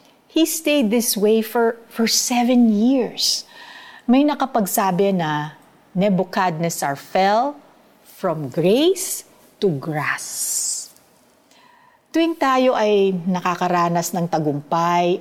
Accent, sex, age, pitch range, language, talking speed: native, female, 50-69, 165-240 Hz, Filipino, 90 wpm